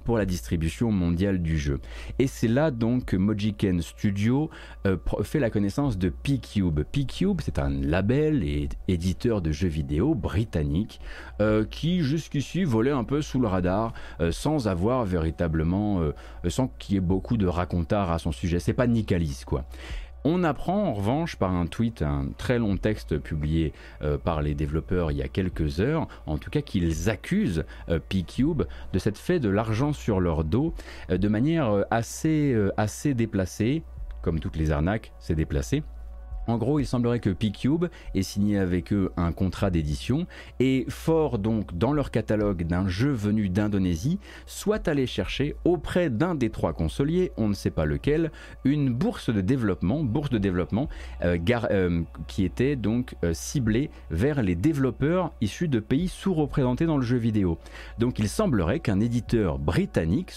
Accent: French